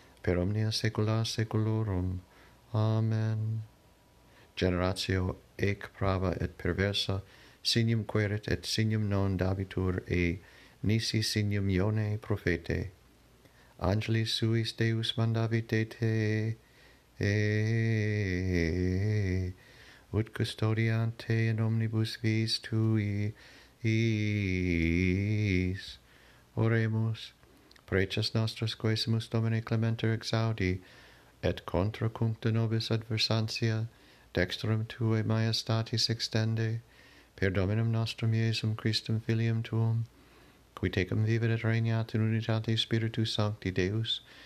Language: English